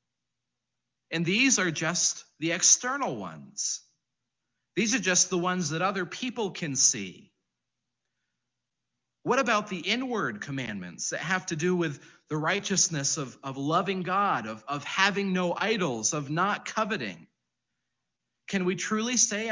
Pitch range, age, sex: 135-195 Hz, 40-59, male